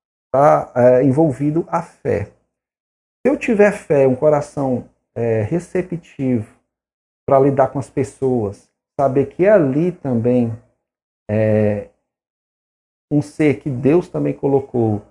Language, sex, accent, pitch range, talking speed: Portuguese, male, Brazilian, 105-135 Hz, 105 wpm